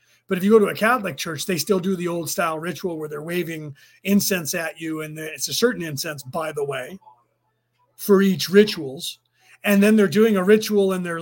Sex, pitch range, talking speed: male, 175-210 Hz, 215 wpm